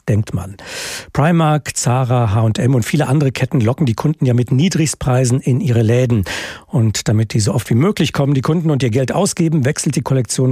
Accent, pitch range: German, 115-140 Hz